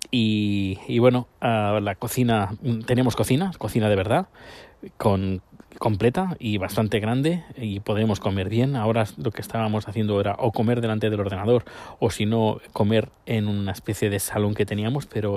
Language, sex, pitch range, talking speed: Spanish, male, 105-125 Hz, 170 wpm